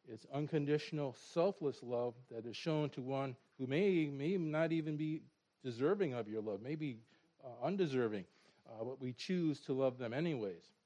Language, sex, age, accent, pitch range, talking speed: English, male, 50-69, American, 115-155 Hz, 165 wpm